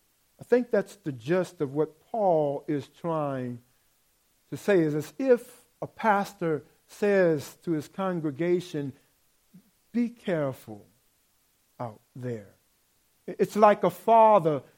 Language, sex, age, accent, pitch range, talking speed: English, male, 50-69, American, 150-200 Hz, 120 wpm